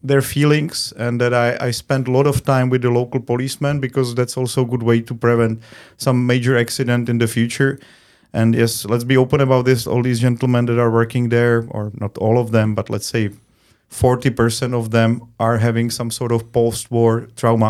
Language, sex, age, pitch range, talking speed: Russian, male, 30-49, 115-130 Hz, 205 wpm